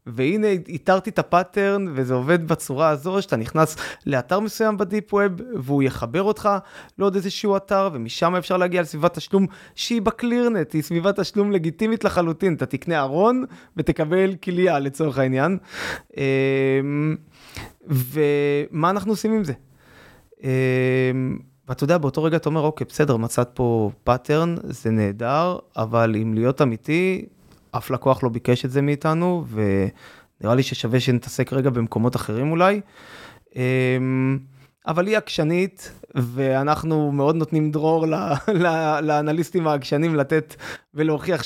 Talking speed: 125 wpm